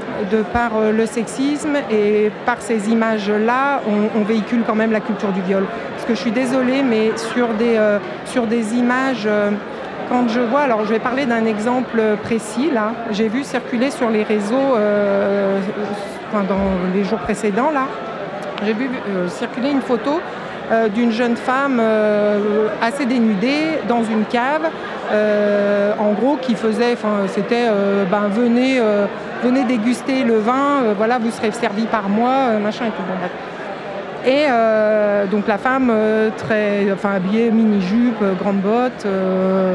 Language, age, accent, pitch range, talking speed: French, 50-69, French, 205-245 Hz, 165 wpm